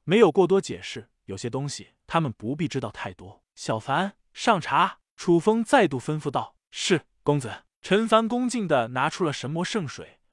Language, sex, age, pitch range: Chinese, male, 20-39, 145-205 Hz